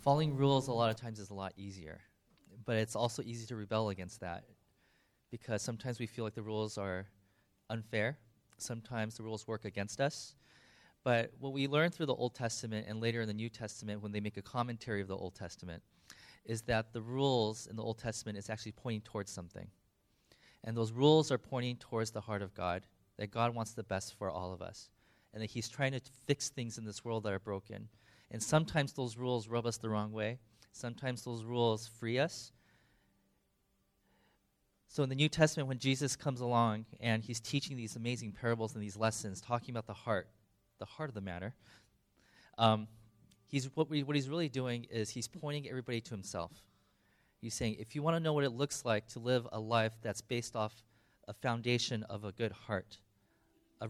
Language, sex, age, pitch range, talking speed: English, male, 20-39, 105-125 Hz, 200 wpm